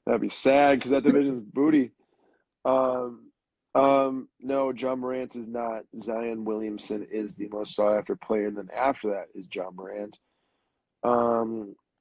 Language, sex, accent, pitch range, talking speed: English, male, American, 105-130 Hz, 145 wpm